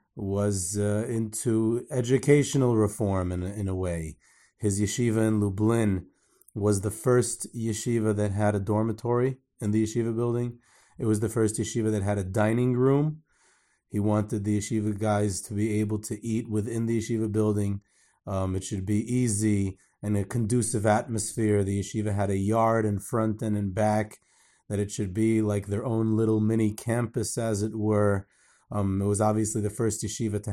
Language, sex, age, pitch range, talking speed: English, male, 30-49, 105-115 Hz, 175 wpm